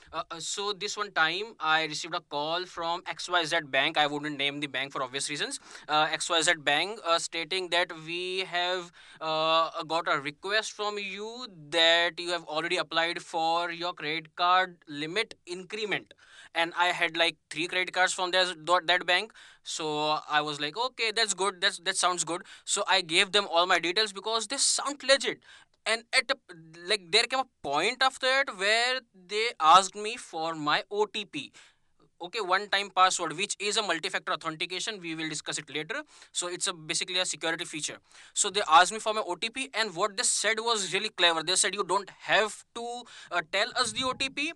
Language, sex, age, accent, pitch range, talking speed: English, male, 20-39, Indian, 170-220 Hz, 185 wpm